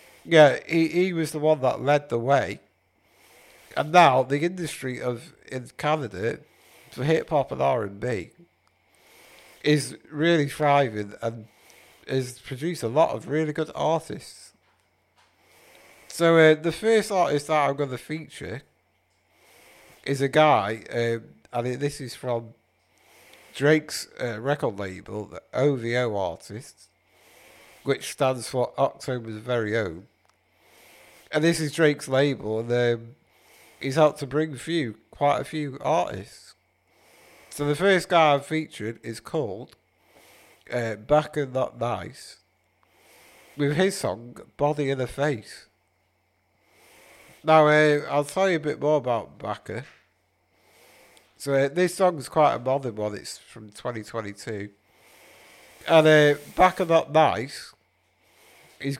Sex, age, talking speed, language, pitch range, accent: male, 50-69, 130 wpm, English, 115-155 Hz, British